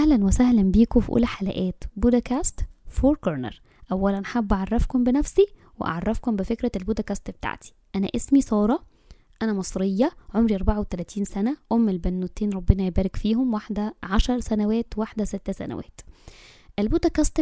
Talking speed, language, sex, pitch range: 125 wpm, Arabic, female, 200-245 Hz